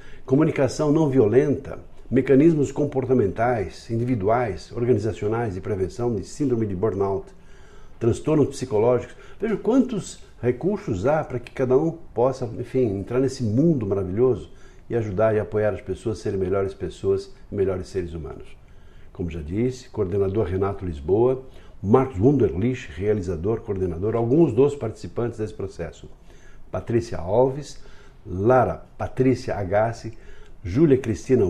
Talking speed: 125 wpm